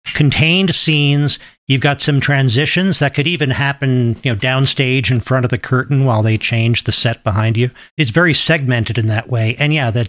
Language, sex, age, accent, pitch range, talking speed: English, male, 50-69, American, 115-145 Hz, 200 wpm